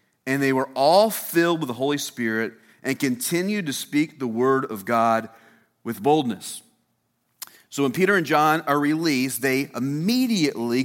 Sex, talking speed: male, 155 wpm